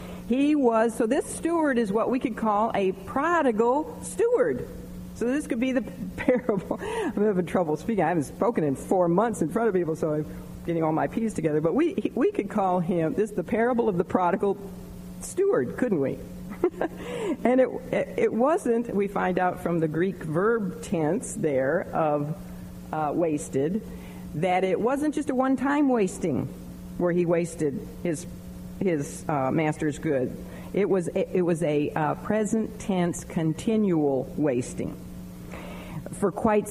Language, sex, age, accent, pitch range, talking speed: English, female, 50-69, American, 155-225 Hz, 155 wpm